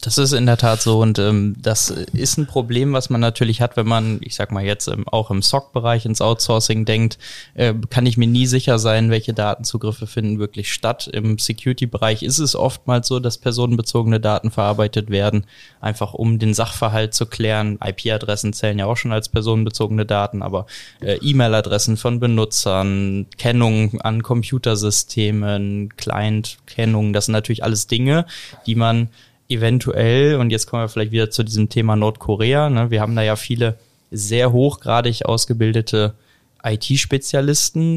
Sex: male